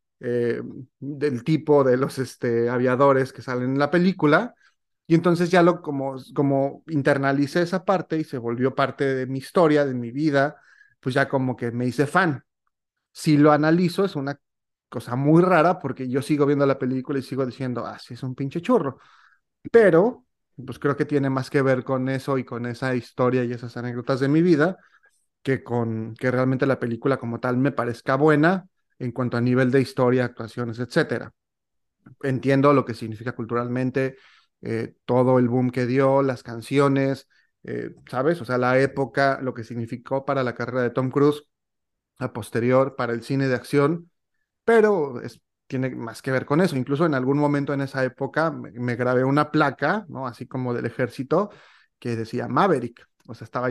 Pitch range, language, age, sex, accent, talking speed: 125-145 Hz, Spanish, 30-49, male, Mexican, 185 wpm